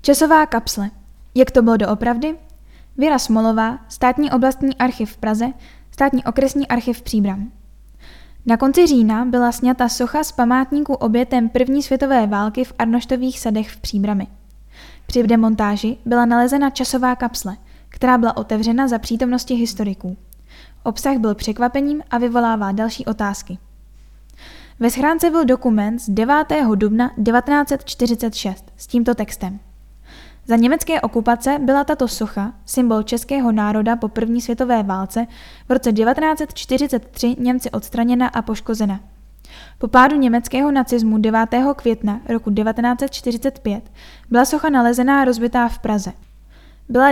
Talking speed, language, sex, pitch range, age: 130 wpm, Czech, female, 220-260 Hz, 10-29